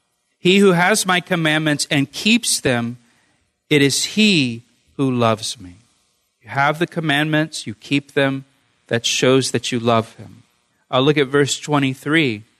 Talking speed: 150 wpm